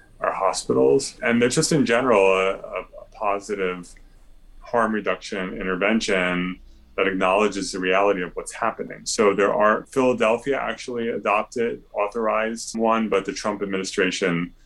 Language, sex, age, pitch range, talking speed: English, male, 30-49, 90-105 Hz, 130 wpm